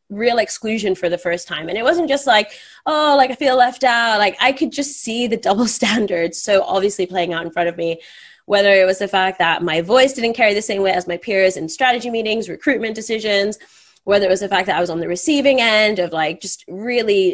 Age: 20-39